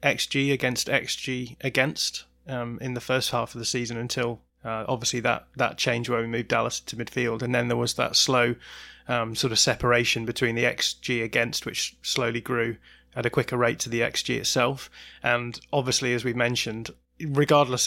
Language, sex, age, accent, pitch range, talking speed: English, male, 20-39, British, 120-130 Hz, 185 wpm